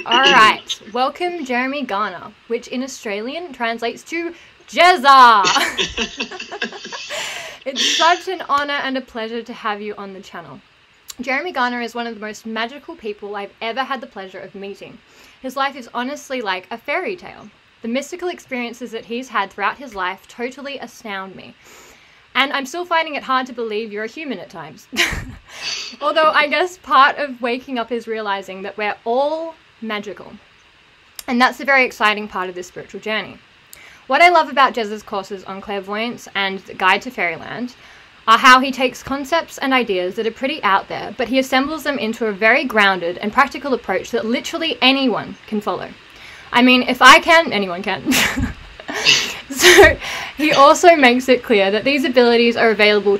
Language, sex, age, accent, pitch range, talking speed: English, female, 20-39, Australian, 210-270 Hz, 175 wpm